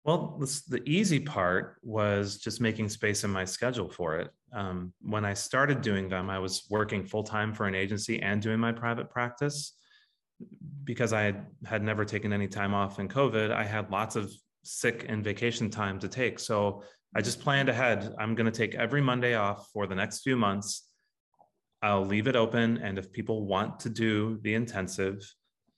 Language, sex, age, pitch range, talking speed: English, male, 30-49, 100-120 Hz, 185 wpm